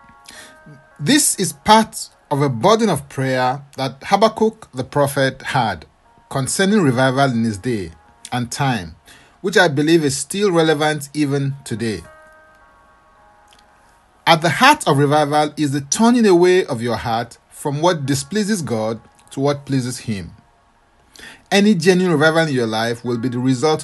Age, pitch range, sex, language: 40-59, 120-170 Hz, male, English